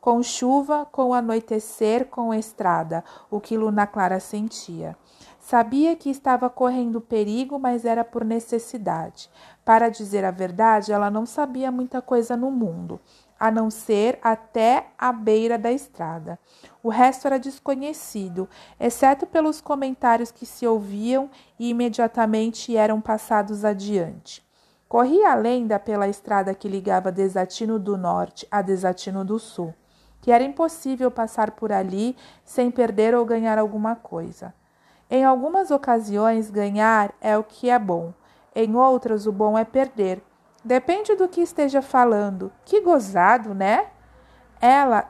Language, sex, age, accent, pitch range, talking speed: Portuguese, female, 50-69, Brazilian, 210-255 Hz, 140 wpm